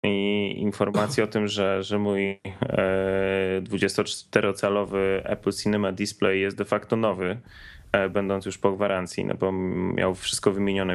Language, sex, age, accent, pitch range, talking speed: Polish, male, 20-39, native, 100-120 Hz, 130 wpm